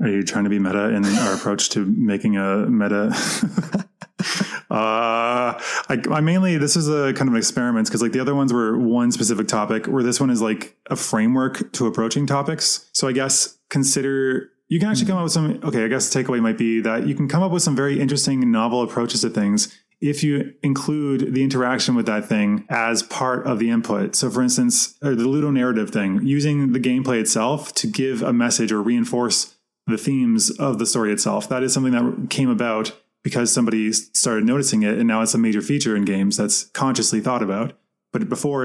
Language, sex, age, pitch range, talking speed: English, male, 20-39, 110-140 Hz, 210 wpm